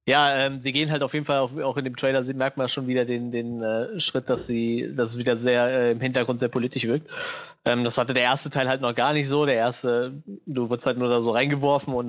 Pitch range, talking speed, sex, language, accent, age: 120-140 Hz, 275 wpm, male, German, German, 20-39